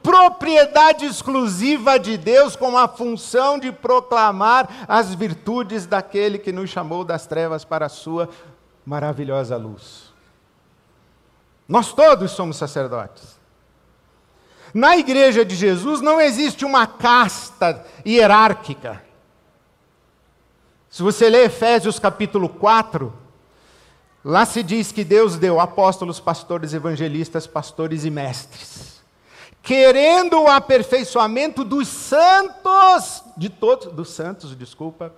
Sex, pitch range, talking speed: male, 165-275 Hz, 105 wpm